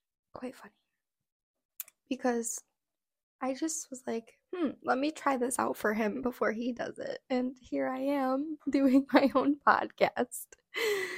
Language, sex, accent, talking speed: English, female, American, 145 wpm